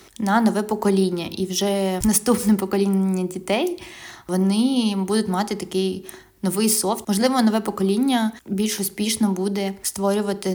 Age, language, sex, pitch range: 20-39, Ukrainian, female, 190-220 Hz